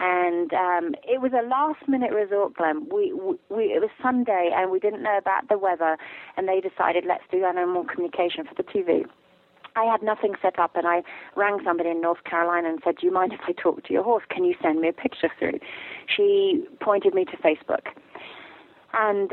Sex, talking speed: female, 205 wpm